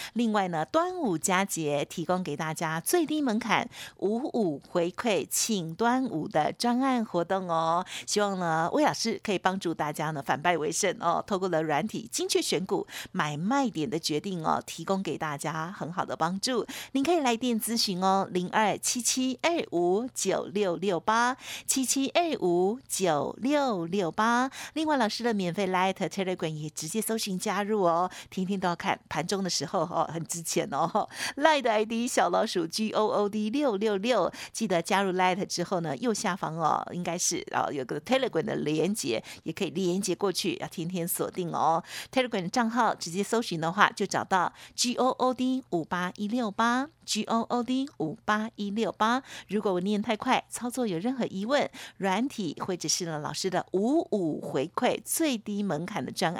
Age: 50-69